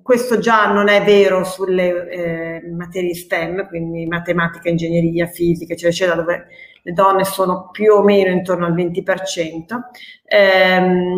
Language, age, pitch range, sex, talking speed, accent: Italian, 30-49, 170-200 Hz, female, 140 wpm, native